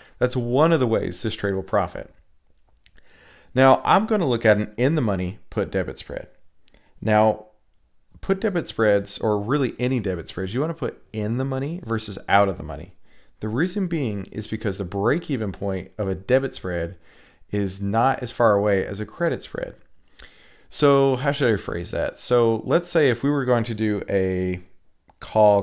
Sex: male